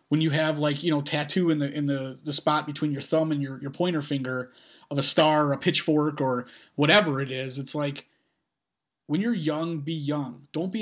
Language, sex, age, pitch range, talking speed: English, male, 30-49, 140-170 Hz, 220 wpm